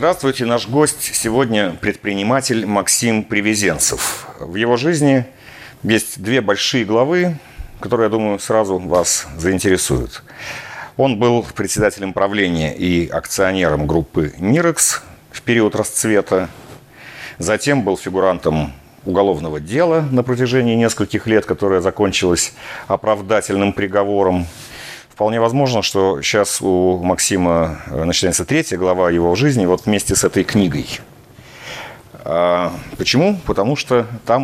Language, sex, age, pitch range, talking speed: Russian, male, 50-69, 90-125 Hz, 110 wpm